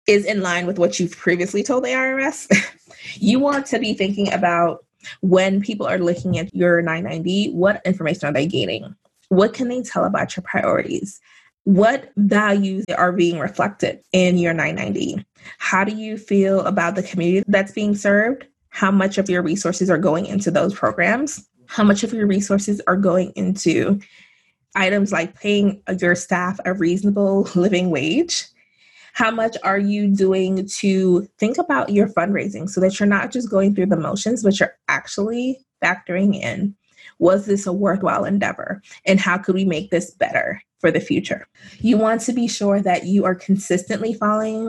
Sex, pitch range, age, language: female, 185-220 Hz, 20-39, English